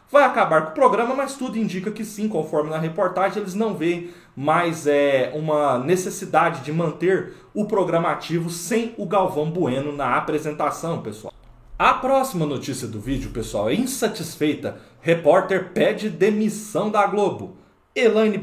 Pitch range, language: 140-195 Hz, Portuguese